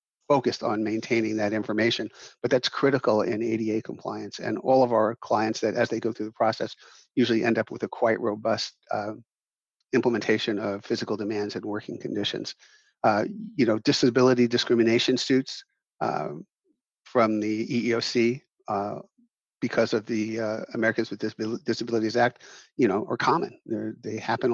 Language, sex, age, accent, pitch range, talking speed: English, male, 50-69, American, 110-130 Hz, 155 wpm